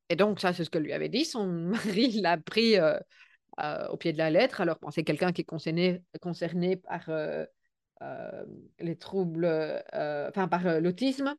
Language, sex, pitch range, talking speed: French, female, 175-230 Hz, 195 wpm